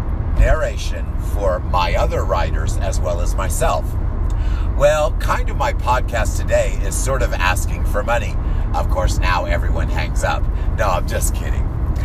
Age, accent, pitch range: 50-69, American, 80-100 Hz